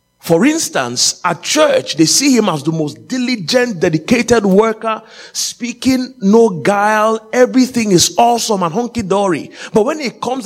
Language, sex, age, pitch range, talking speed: English, male, 30-49, 180-250 Hz, 145 wpm